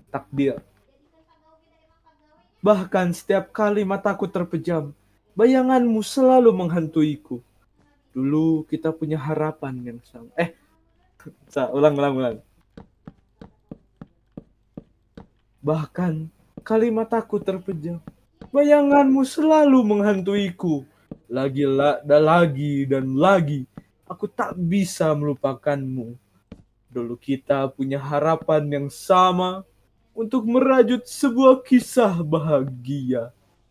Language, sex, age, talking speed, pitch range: Malay, male, 20-39, 80 wpm, 135-205 Hz